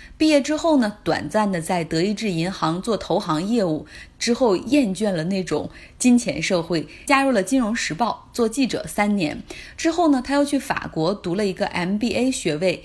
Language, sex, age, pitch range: Chinese, female, 20-39, 175-245 Hz